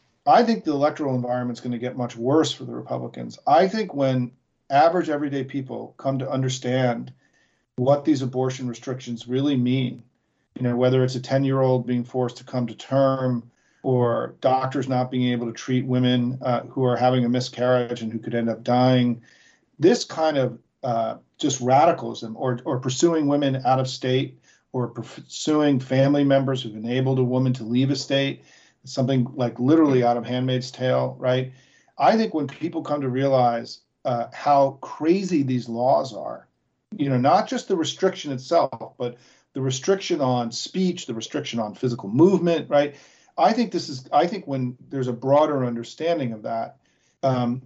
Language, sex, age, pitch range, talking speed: English, male, 40-59, 120-140 Hz, 175 wpm